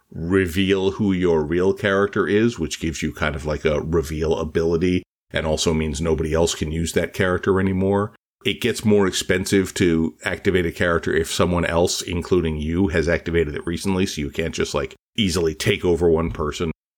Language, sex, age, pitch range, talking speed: English, male, 50-69, 80-95 Hz, 185 wpm